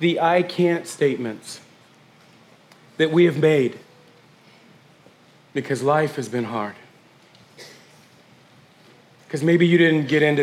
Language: English